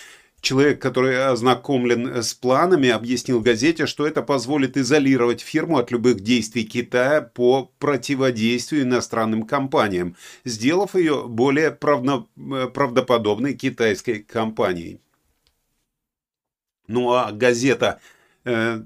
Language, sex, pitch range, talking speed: Russian, male, 120-140 Hz, 95 wpm